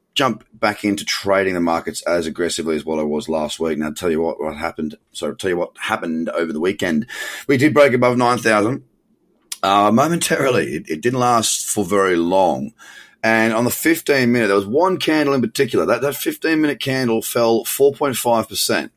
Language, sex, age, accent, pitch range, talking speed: English, male, 30-49, Australian, 95-125 Hz, 200 wpm